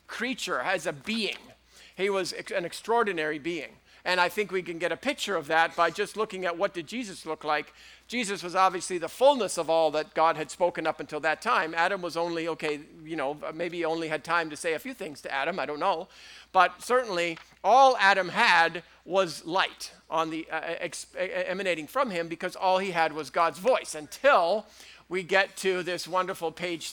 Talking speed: 205 wpm